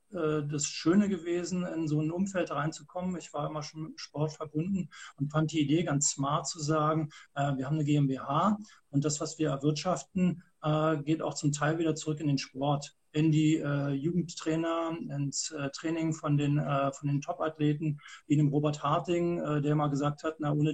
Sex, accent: male, German